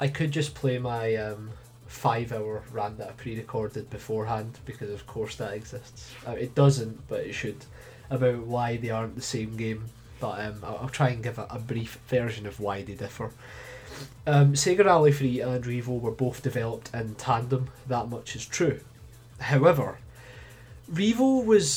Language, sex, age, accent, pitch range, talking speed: English, male, 20-39, British, 110-130 Hz, 165 wpm